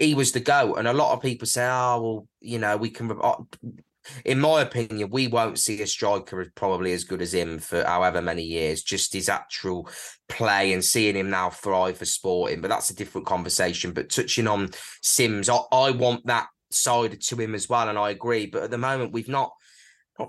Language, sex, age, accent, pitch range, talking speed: English, male, 20-39, British, 105-145 Hz, 215 wpm